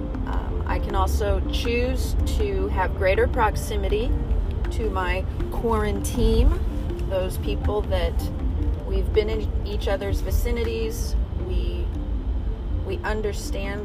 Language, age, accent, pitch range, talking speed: English, 30-49, American, 75-85 Hz, 100 wpm